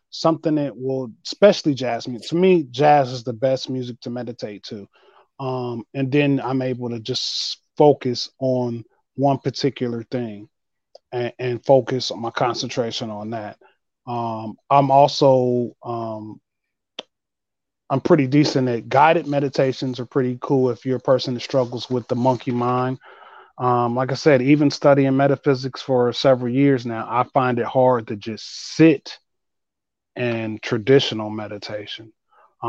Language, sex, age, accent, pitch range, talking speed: English, male, 20-39, American, 120-135 Hz, 145 wpm